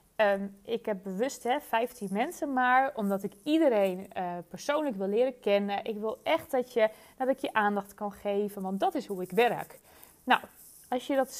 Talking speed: 195 wpm